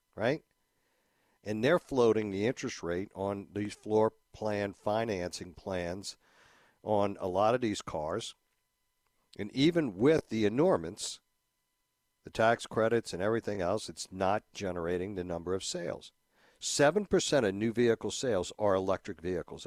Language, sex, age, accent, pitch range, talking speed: English, male, 60-79, American, 90-115 Hz, 135 wpm